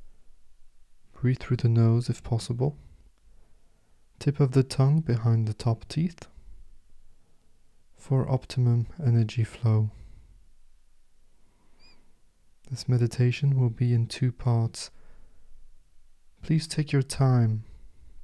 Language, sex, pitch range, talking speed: English, male, 90-125 Hz, 90 wpm